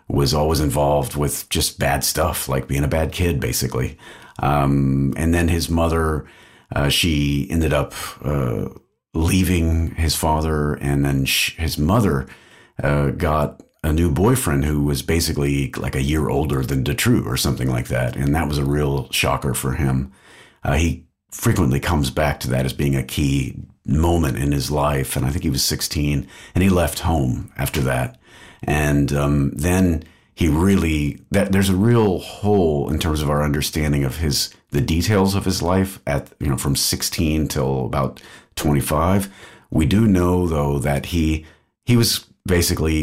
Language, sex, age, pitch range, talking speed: English, male, 40-59, 70-85 Hz, 170 wpm